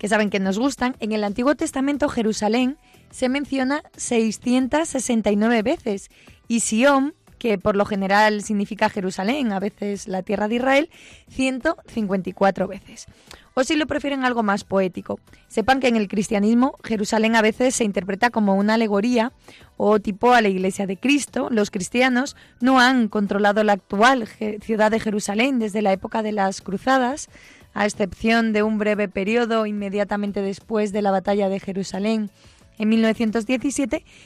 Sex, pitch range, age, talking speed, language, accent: female, 205-250 Hz, 20-39, 155 wpm, Spanish, Spanish